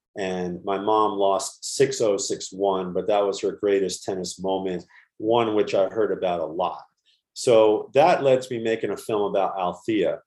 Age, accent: 40-59, American